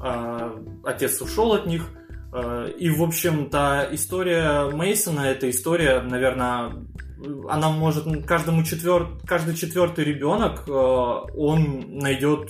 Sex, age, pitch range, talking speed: male, 20-39, 120-150 Hz, 100 wpm